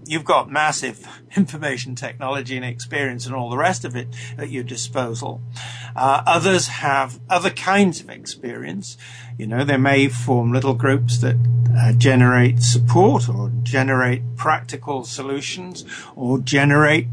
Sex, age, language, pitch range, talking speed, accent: male, 50-69, English, 120-140 Hz, 140 wpm, British